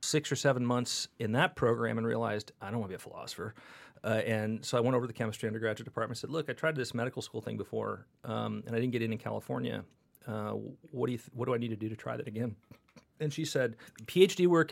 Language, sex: English, male